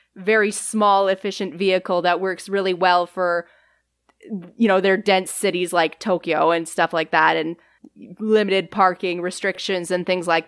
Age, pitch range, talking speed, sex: 20-39, 185-215 Hz, 155 wpm, female